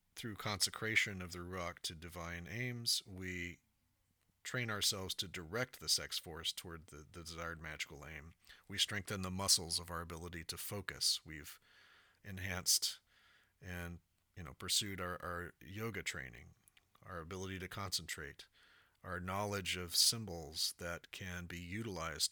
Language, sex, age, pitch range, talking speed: English, male, 40-59, 85-100 Hz, 145 wpm